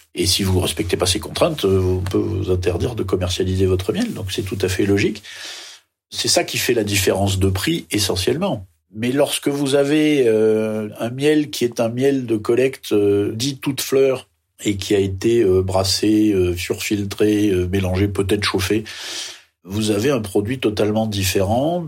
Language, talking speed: French, 165 wpm